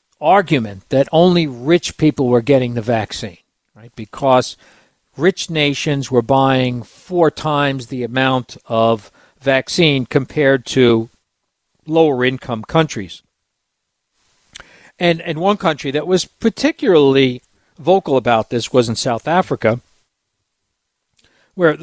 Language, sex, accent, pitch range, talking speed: English, male, American, 125-170 Hz, 115 wpm